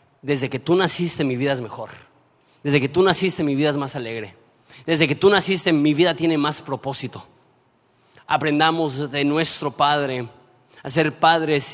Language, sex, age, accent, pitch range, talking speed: Spanish, male, 30-49, Mexican, 130-160 Hz, 170 wpm